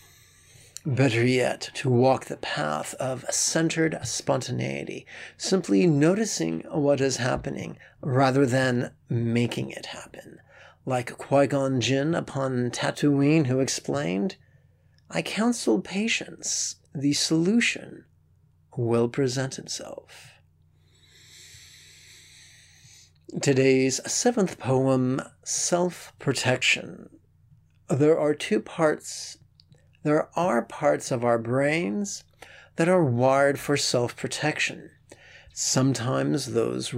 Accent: American